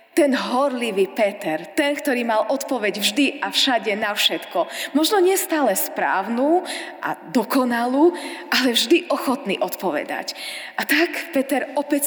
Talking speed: 125 wpm